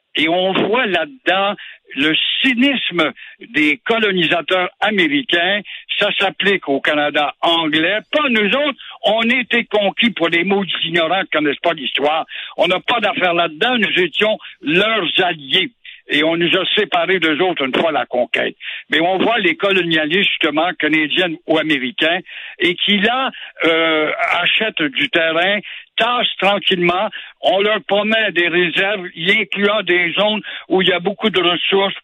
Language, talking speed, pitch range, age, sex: French, 150 wpm, 165-210 Hz, 60-79, male